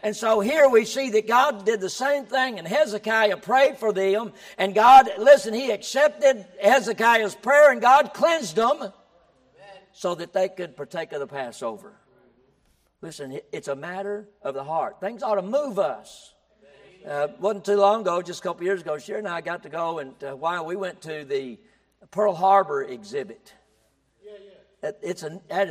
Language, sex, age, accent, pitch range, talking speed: English, male, 60-79, American, 165-205 Hz, 175 wpm